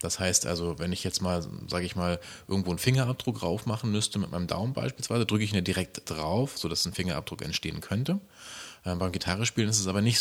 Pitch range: 85-105 Hz